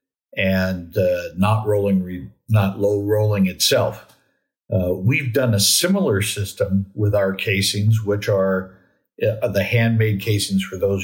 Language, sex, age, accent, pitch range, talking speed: English, male, 50-69, American, 95-110 Hz, 130 wpm